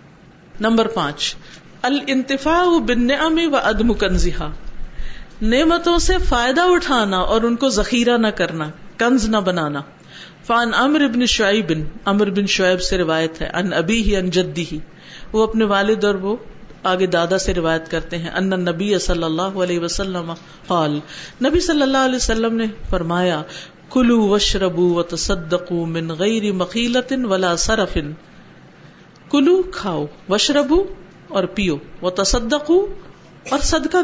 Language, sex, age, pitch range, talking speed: Urdu, female, 50-69, 175-240 Hz, 125 wpm